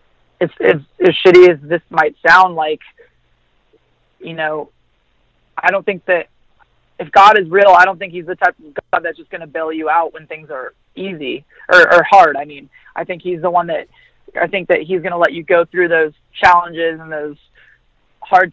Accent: American